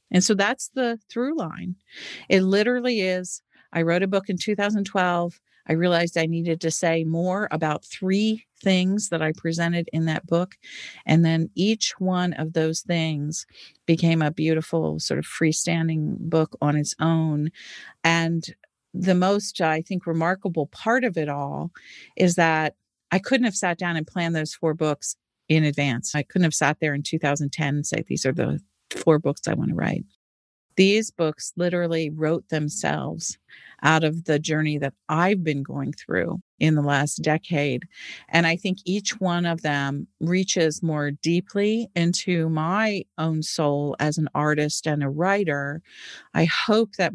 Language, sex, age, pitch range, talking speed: English, female, 40-59, 155-185 Hz, 165 wpm